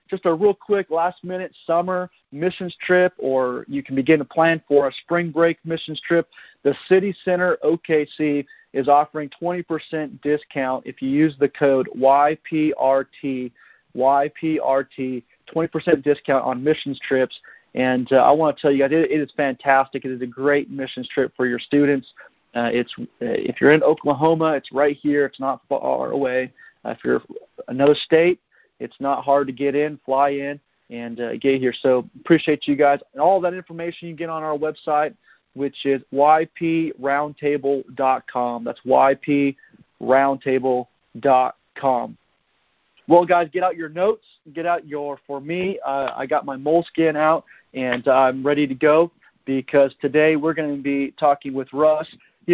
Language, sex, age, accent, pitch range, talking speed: English, male, 40-59, American, 135-160 Hz, 160 wpm